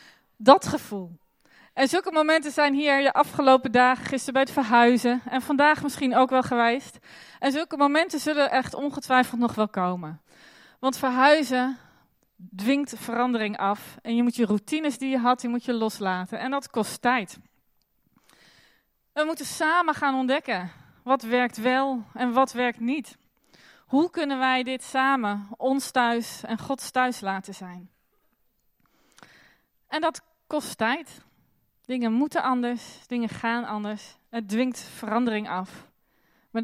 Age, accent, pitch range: 20-39, Dutch, 225-270 Hz